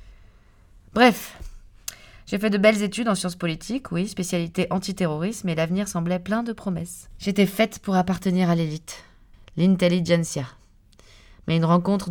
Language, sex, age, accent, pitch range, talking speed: French, female, 20-39, French, 135-180 Hz, 140 wpm